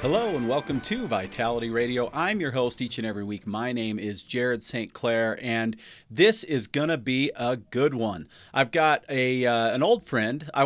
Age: 40-59